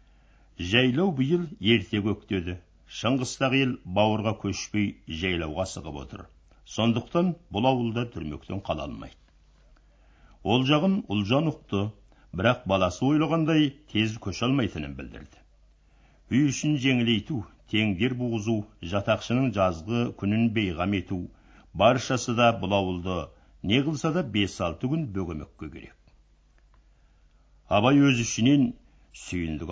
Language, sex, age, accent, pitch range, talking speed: Russian, male, 60-79, Turkish, 85-120 Hz, 75 wpm